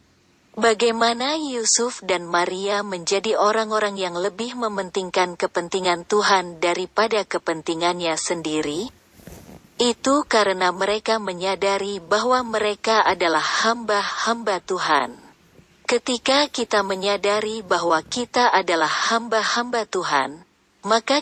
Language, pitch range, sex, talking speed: Indonesian, 180-230 Hz, female, 90 wpm